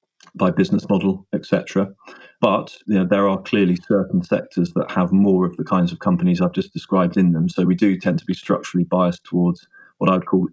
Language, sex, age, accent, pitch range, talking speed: English, male, 20-39, British, 90-100 Hz, 210 wpm